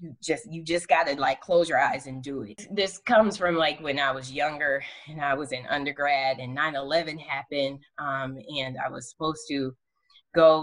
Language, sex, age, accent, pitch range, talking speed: English, female, 20-39, American, 130-160 Hz, 190 wpm